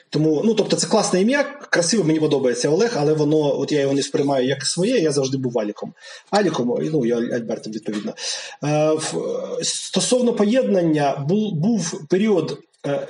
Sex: male